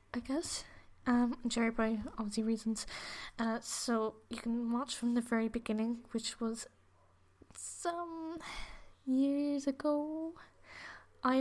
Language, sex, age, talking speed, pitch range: English, female, 10-29, 115 wpm, 220-245 Hz